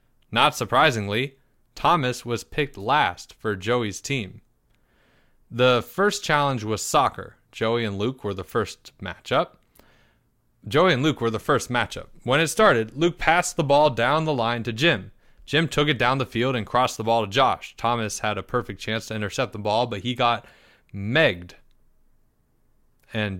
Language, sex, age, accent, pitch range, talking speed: English, male, 20-39, American, 110-145 Hz, 170 wpm